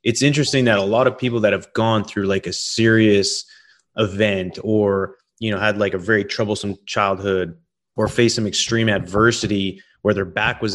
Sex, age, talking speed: male, 30-49, 185 wpm